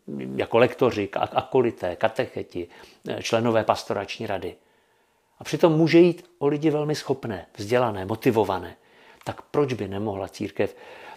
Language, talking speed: Czech, 120 wpm